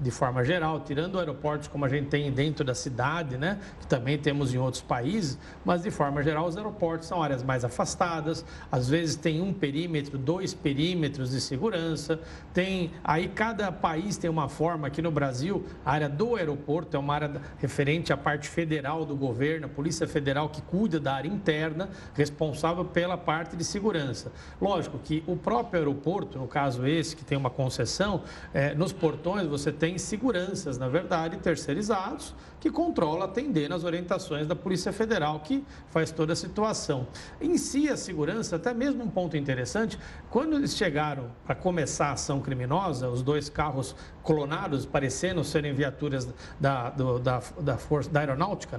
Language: Portuguese